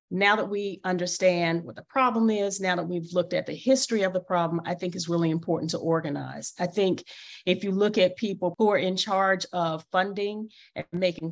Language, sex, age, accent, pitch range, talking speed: English, female, 40-59, American, 170-205 Hz, 210 wpm